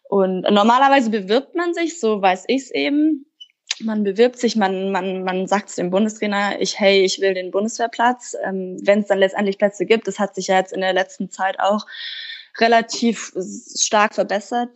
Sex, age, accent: female, 10-29, German